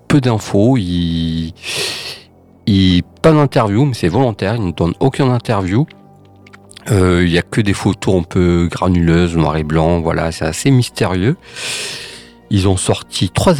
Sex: male